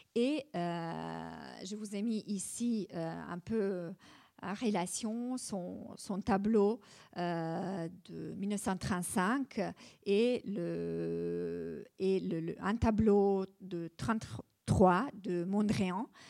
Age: 50-69